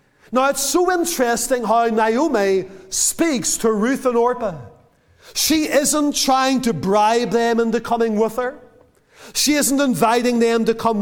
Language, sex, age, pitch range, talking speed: English, male, 40-59, 215-260 Hz, 145 wpm